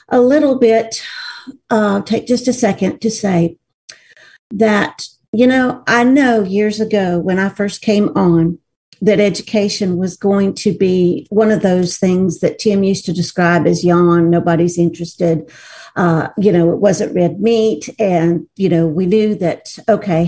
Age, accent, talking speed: 50-69, American, 165 wpm